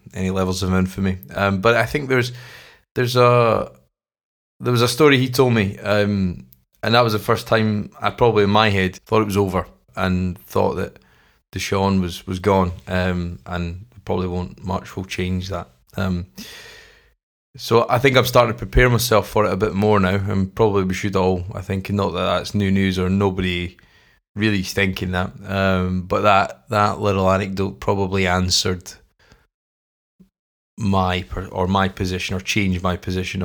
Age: 20-39